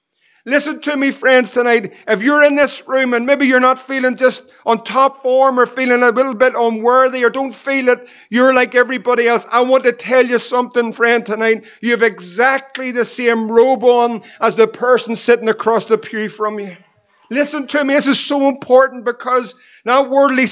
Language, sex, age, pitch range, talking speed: English, male, 50-69, 235-280 Hz, 195 wpm